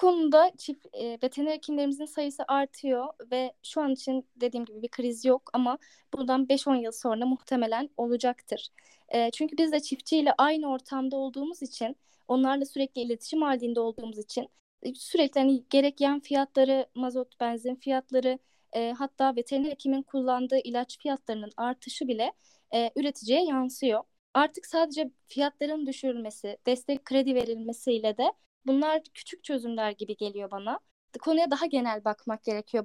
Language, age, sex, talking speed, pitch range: Turkish, 10-29, female, 140 wpm, 245-285 Hz